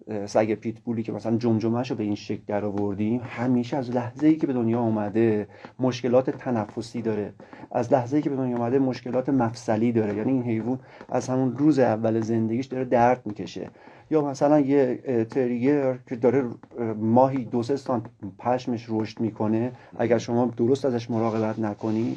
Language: Persian